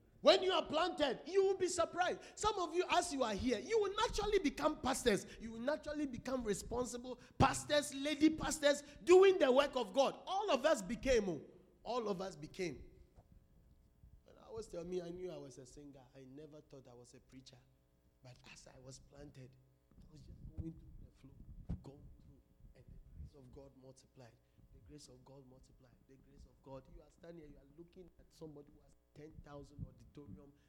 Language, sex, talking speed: English, male, 200 wpm